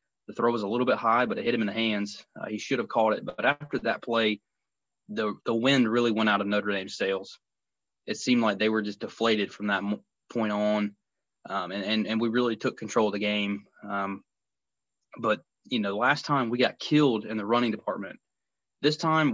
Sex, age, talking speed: male, 20-39, 220 wpm